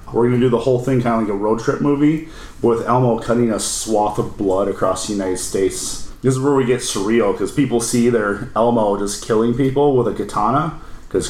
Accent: American